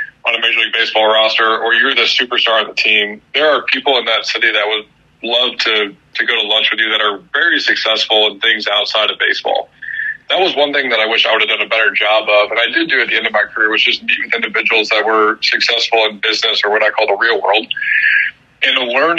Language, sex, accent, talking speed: English, male, American, 260 wpm